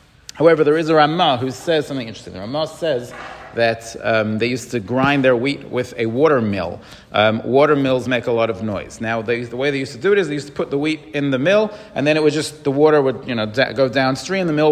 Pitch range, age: 125-155 Hz, 40-59